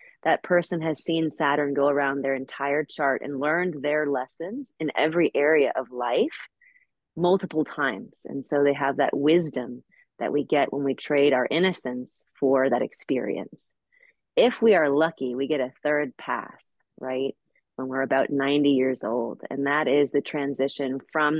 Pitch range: 130-160 Hz